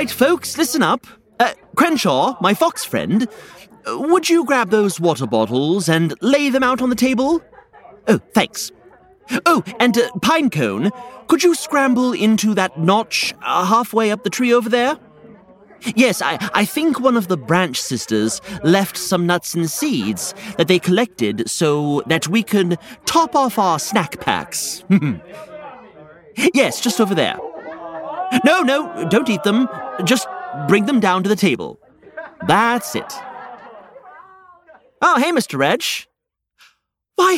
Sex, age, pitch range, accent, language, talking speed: male, 30-49, 160-270 Hz, British, English, 145 wpm